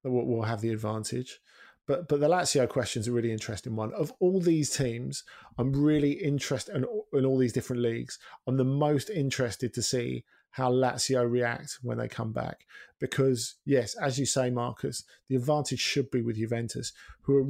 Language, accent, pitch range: English, British, 120-145 Hz